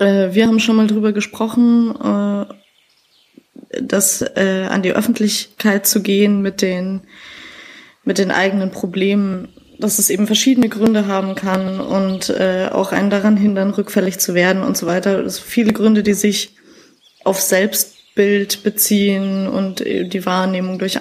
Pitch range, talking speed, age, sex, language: 190-215 Hz, 135 wpm, 20-39, female, German